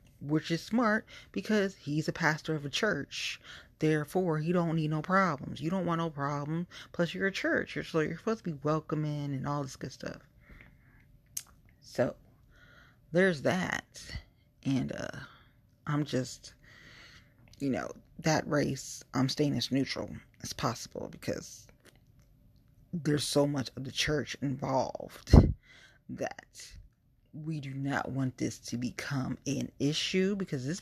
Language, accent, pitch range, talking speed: English, American, 130-165 Hz, 140 wpm